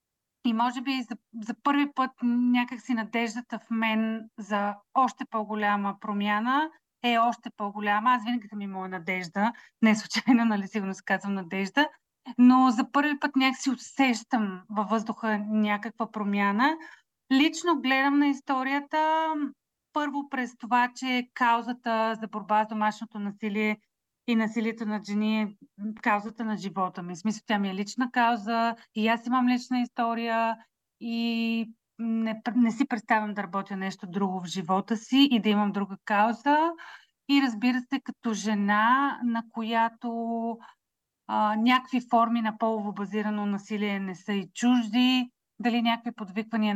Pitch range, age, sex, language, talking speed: 215-250 Hz, 30-49, female, Bulgarian, 150 wpm